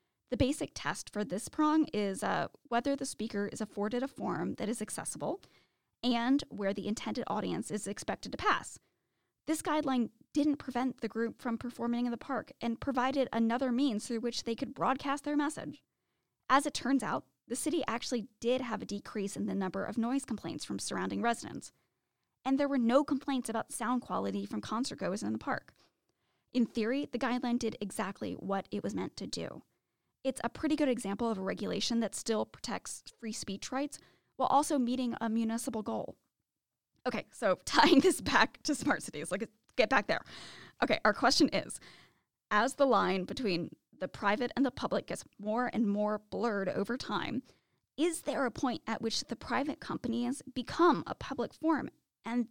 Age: 10-29